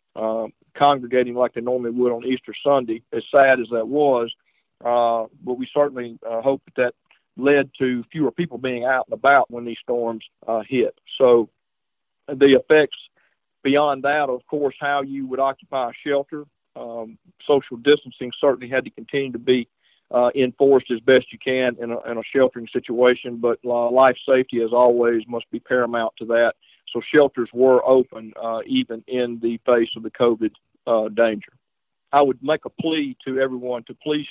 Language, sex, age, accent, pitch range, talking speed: English, male, 50-69, American, 120-135 Hz, 175 wpm